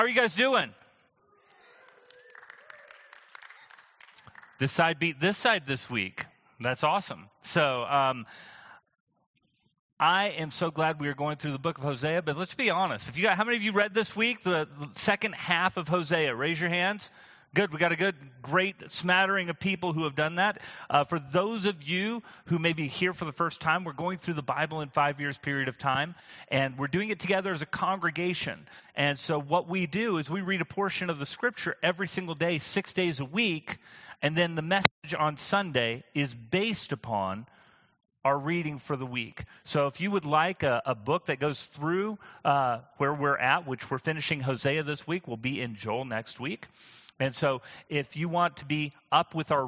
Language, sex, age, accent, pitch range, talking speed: English, male, 30-49, American, 140-180 Hz, 200 wpm